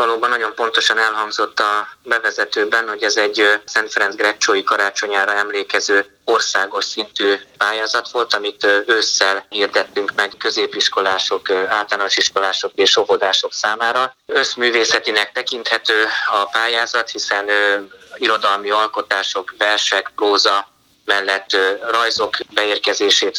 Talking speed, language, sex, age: 100 wpm, Hungarian, male, 20-39